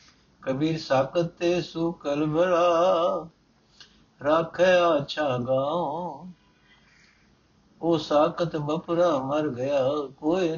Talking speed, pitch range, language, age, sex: 80 wpm, 130-155 Hz, Punjabi, 60-79, male